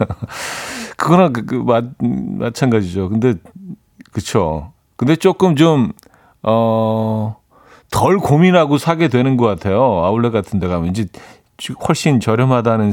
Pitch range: 100-140 Hz